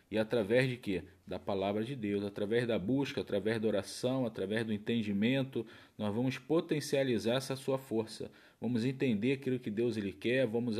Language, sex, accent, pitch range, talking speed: Portuguese, male, Brazilian, 110-135 Hz, 170 wpm